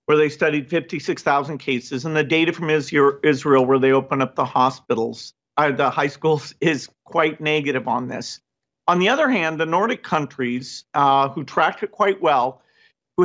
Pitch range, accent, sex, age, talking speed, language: 145-180 Hz, American, male, 50-69, 170 wpm, English